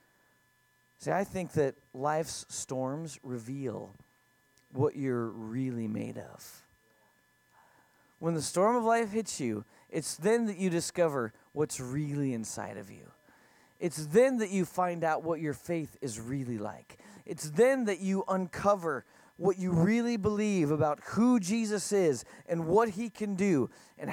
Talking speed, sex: 150 wpm, male